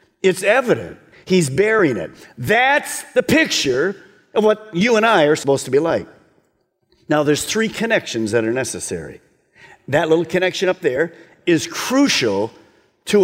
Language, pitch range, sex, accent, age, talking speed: English, 145-205 Hz, male, American, 50-69, 150 wpm